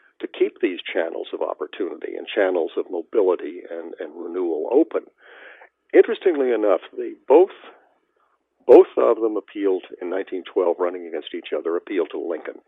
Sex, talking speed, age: male, 145 wpm, 50-69